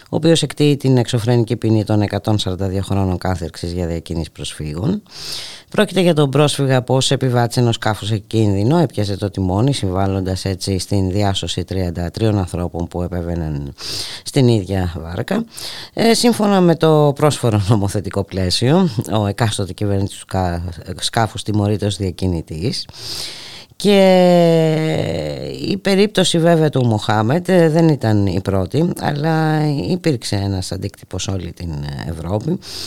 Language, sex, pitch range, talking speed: Greek, female, 95-135 Hz, 120 wpm